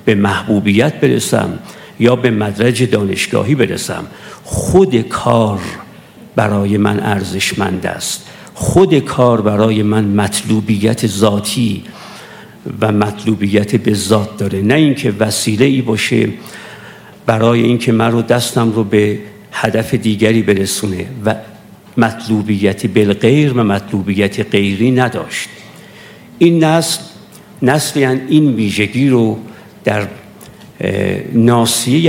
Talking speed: 100 wpm